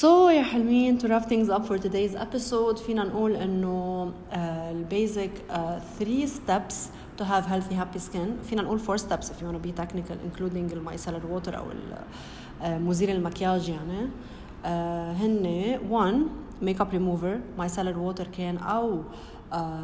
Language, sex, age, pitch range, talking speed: English, female, 30-49, 175-215 Hz, 145 wpm